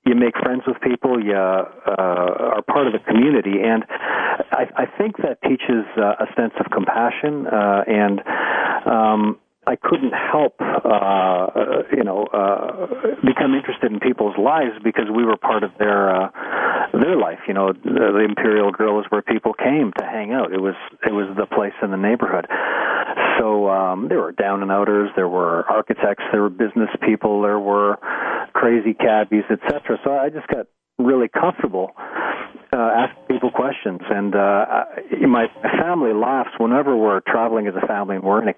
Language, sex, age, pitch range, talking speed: English, male, 40-59, 100-115 Hz, 180 wpm